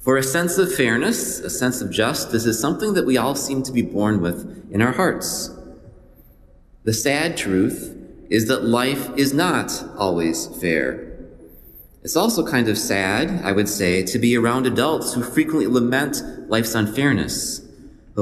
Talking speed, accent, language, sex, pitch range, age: 165 wpm, American, English, male, 95-125 Hz, 30-49